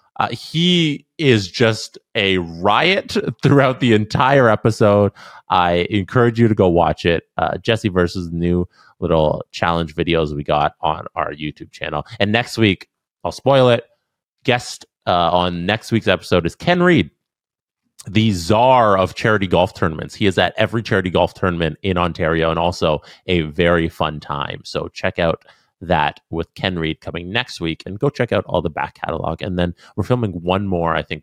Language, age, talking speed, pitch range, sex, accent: English, 30-49, 175 wpm, 85-140 Hz, male, American